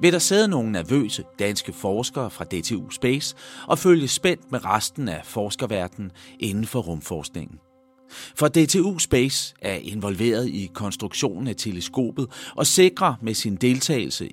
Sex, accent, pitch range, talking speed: male, native, 105-160 Hz, 140 wpm